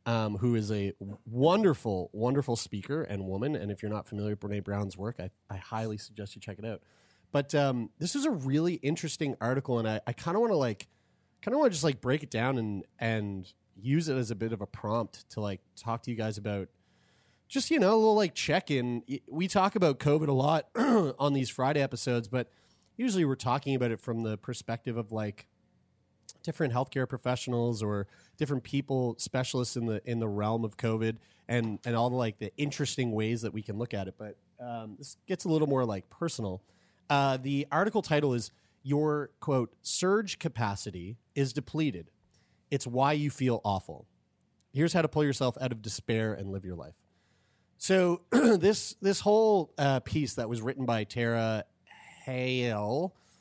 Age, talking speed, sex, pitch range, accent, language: 30-49, 195 wpm, male, 110-145 Hz, American, English